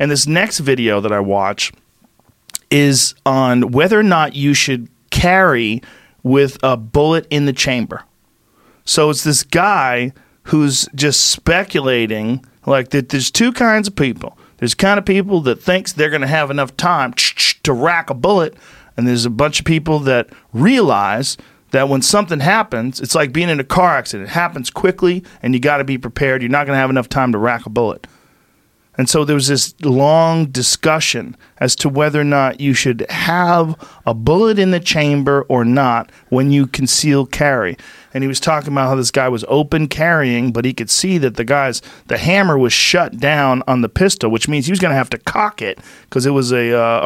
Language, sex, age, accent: English, male, 40-59, American